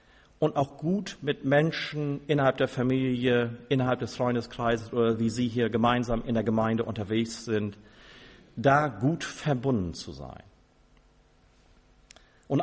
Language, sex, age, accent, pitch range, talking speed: German, male, 50-69, German, 115-150 Hz, 130 wpm